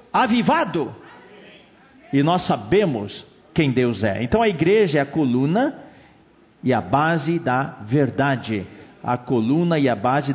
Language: Portuguese